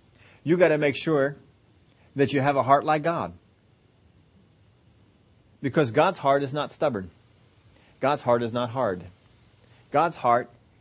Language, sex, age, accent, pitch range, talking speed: English, male, 40-59, American, 110-150 Hz, 140 wpm